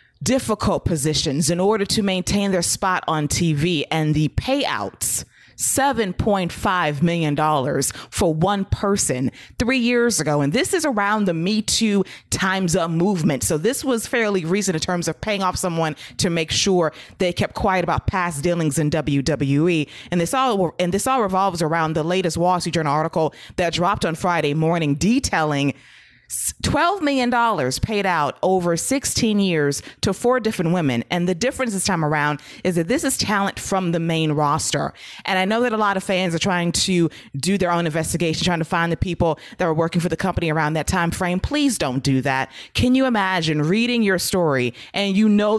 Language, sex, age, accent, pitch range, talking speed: English, female, 30-49, American, 155-200 Hz, 190 wpm